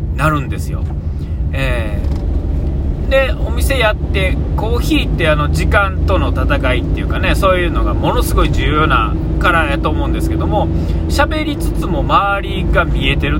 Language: Japanese